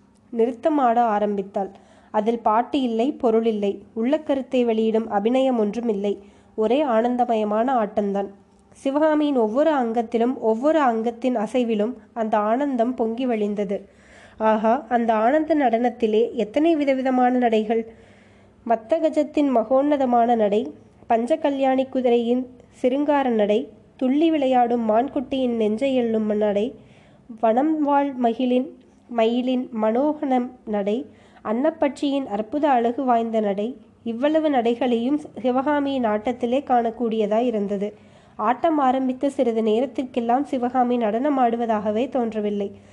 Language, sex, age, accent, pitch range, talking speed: Tamil, female, 20-39, native, 220-265 Hz, 100 wpm